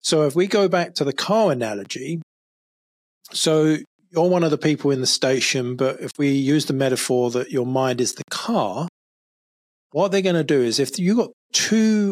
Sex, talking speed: male, 200 wpm